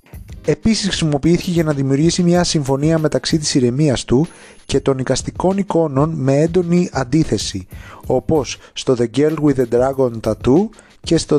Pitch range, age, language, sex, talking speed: 120-170 Hz, 30-49, Greek, male, 150 wpm